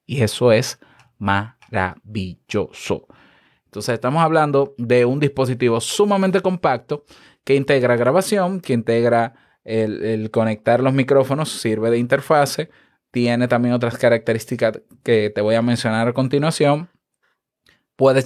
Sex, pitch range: male, 110-145 Hz